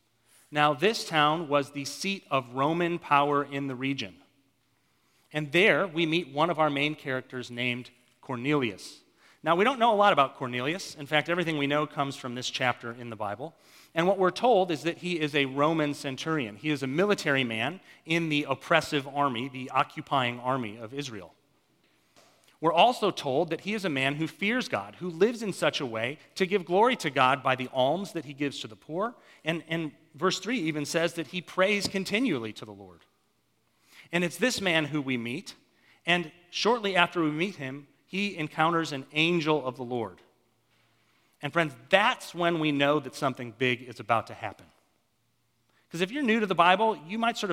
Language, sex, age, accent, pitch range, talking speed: English, male, 40-59, American, 130-170 Hz, 195 wpm